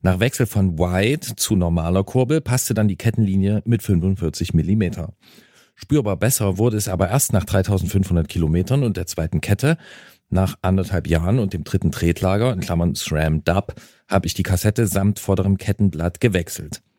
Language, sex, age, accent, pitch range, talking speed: German, male, 40-59, German, 90-120 Hz, 160 wpm